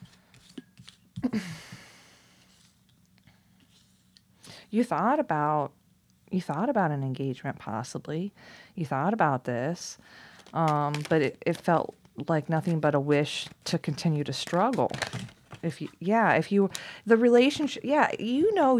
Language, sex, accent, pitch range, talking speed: English, female, American, 170-230 Hz, 120 wpm